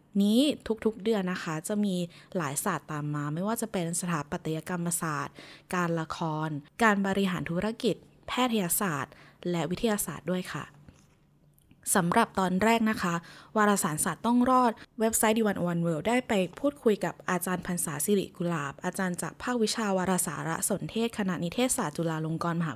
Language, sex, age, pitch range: Thai, female, 20-39, 165-220 Hz